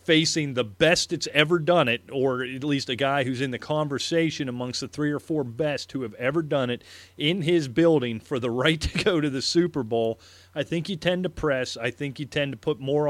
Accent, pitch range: American, 115-145 Hz